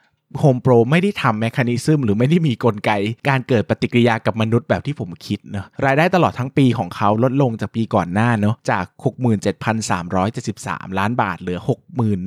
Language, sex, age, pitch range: Thai, male, 20-39, 100-130 Hz